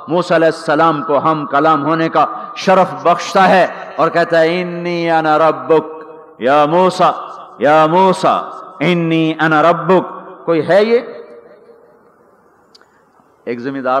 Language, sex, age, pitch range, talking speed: Urdu, male, 50-69, 150-185 Hz, 70 wpm